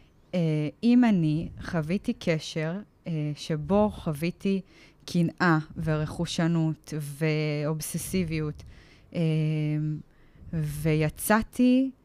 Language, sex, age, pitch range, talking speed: Hebrew, female, 20-39, 155-200 Hz, 50 wpm